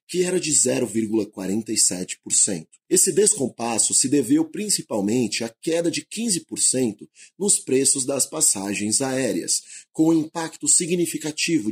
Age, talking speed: 30-49, 115 wpm